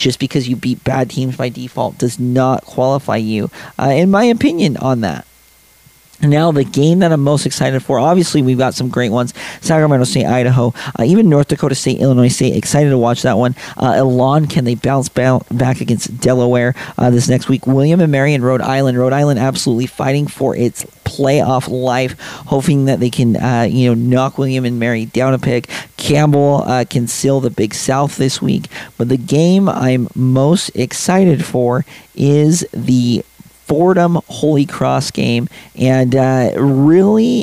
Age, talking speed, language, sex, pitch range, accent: 40-59, 180 wpm, English, male, 125-145 Hz, American